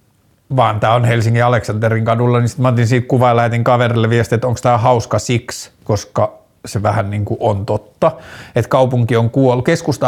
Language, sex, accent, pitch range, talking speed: Finnish, male, native, 115-145 Hz, 160 wpm